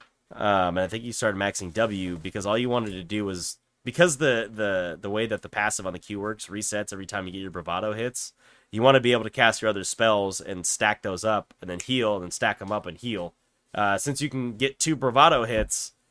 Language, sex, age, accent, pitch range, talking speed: English, male, 30-49, American, 95-125 Hz, 250 wpm